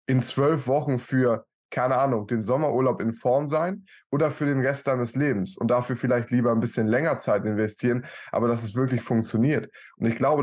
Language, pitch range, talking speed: German, 115-135 Hz, 195 wpm